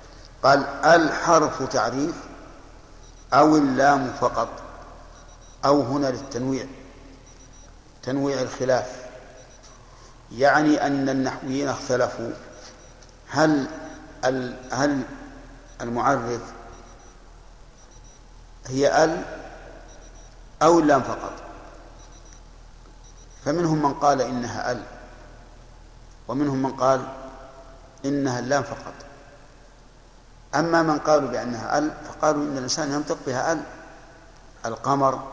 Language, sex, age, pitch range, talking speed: Arabic, male, 50-69, 125-145 Hz, 80 wpm